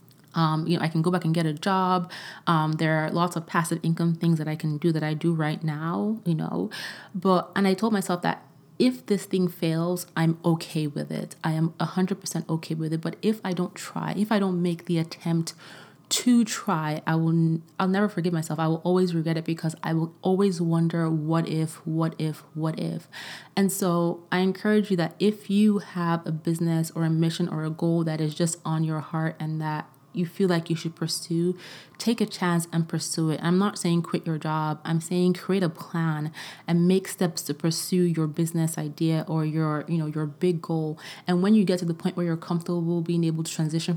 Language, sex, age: English, female, 20-39